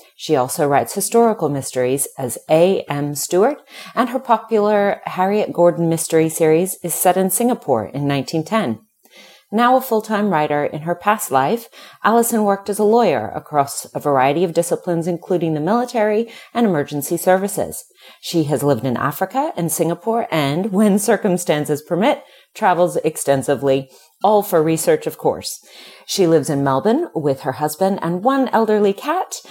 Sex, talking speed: female, 150 wpm